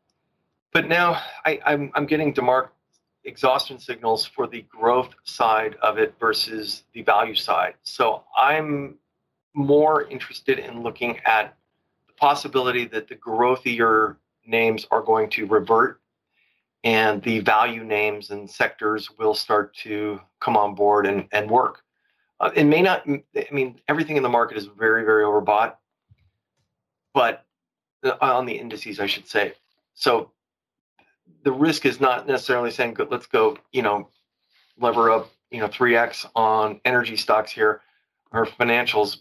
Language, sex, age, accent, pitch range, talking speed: English, male, 40-59, American, 105-135 Hz, 145 wpm